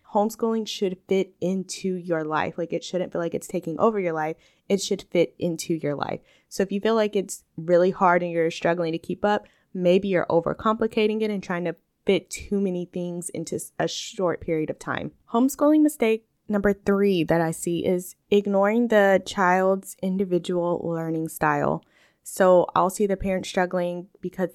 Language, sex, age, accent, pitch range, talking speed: English, female, 20-39, American, 165-200 Hz, 180 wpm